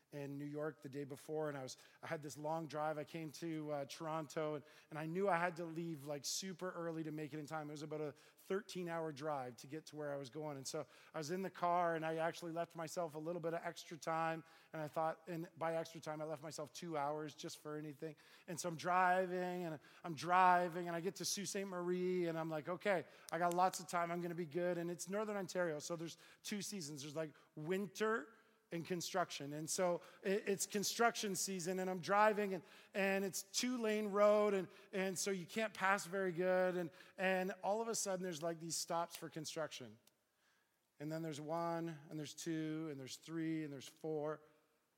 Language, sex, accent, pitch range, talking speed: English, male, American, 150-180 Hz, 225 wpm